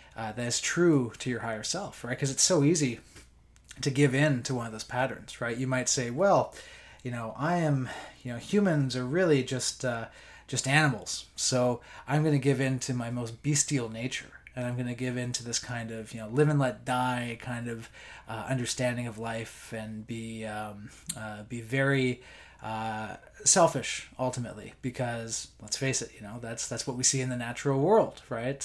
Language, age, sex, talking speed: English, 20-39, male, 205 wpm